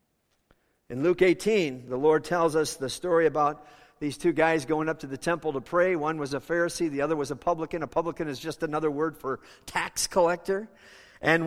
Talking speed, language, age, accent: 205 wpm, English, 50-69, American